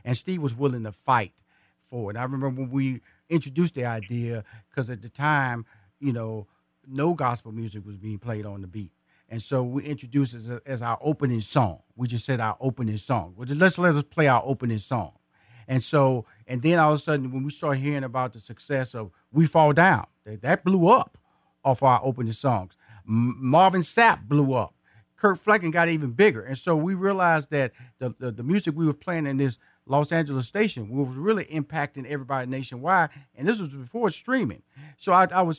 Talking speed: 210 wpm